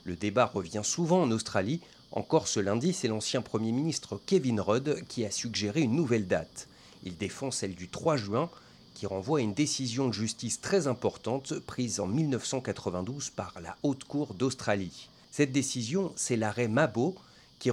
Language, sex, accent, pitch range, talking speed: French, male, French, 105-150 Hz, 170 wpm